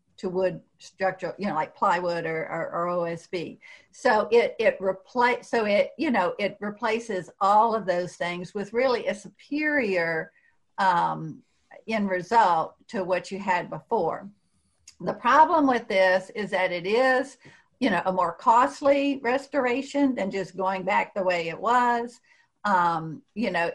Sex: female